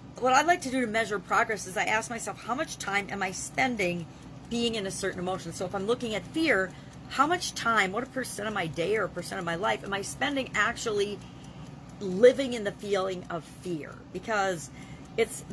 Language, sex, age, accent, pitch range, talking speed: English, female, 40-59, American, 180-230 Hz, 215 wpm